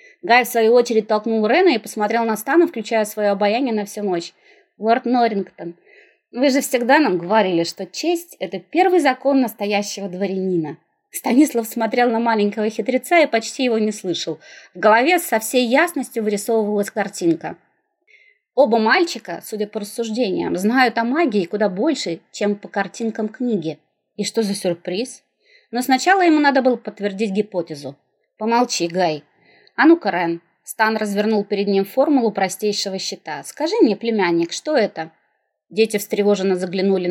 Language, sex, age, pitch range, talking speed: Russian, female, 20-39, 190-265 Hz, 150 wpm